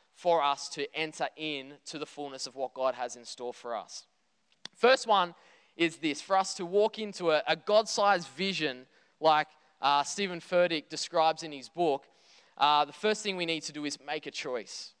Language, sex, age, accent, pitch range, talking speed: English, male, 20-39, Australian, 150-190 Hz, 195 wpm